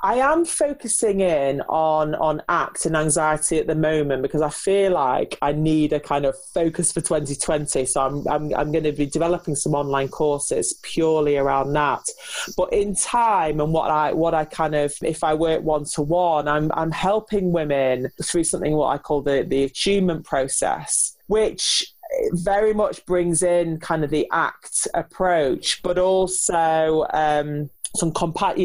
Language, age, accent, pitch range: English, 30-49, British, 155-190 Hz